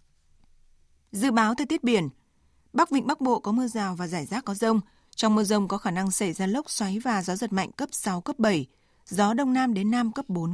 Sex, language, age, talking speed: female, Vietnamese, 20-39, 240 wpm